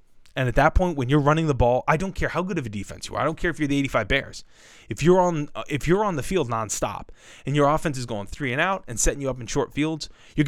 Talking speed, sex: 300 wpm, male